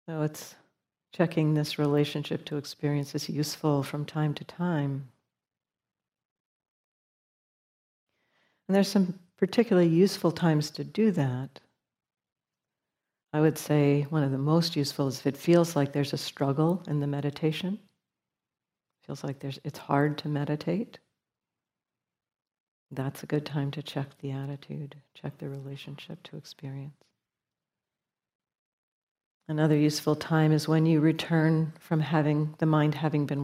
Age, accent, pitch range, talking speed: 60-79, American, 140-160 Hz, 135 wpm